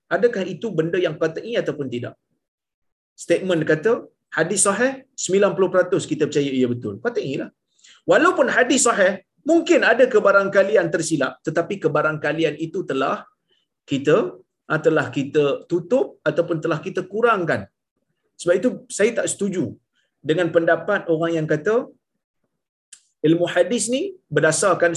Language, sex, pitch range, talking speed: Malayalam, male, 140-215 Hz, 125 wpm